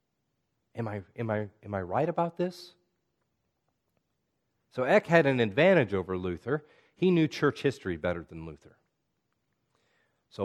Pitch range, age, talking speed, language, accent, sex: 105-140 Hz, 40-59, 125 wpm, English, American, male